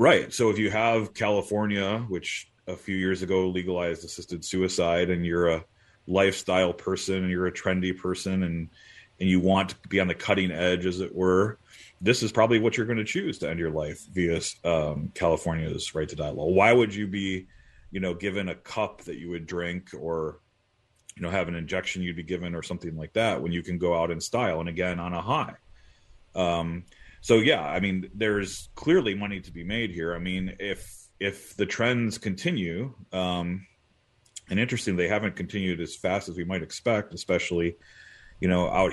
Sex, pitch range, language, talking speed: male, 85-100 Hz, English, 200 wpm